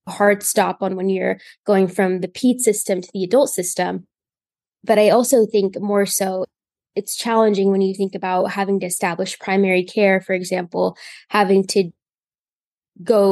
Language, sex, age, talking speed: English, female, 10-29, 160 wpm